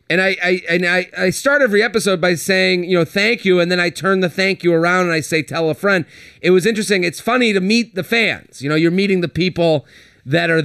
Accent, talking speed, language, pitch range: American, 260 wpm, English, 160-210 Hz